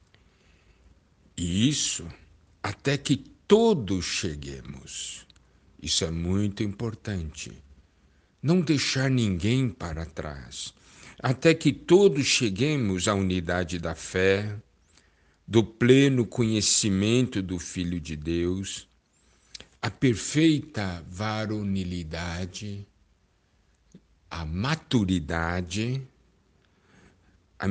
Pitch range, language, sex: 80-120 Hz, Portuguese, male